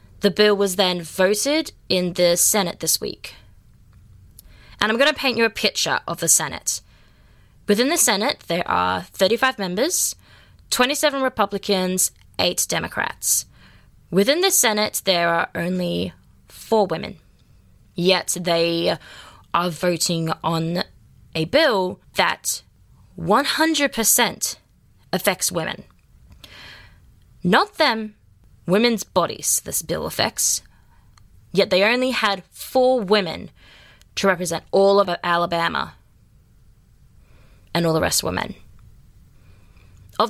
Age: 20-39